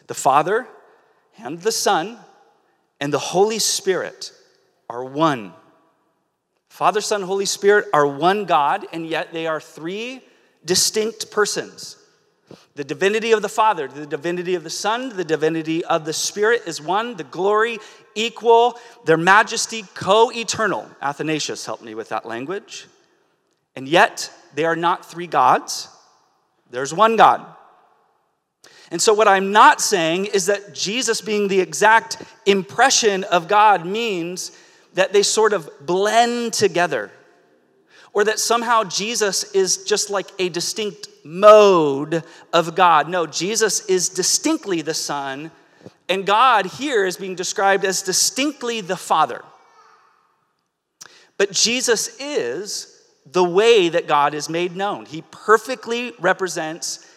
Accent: American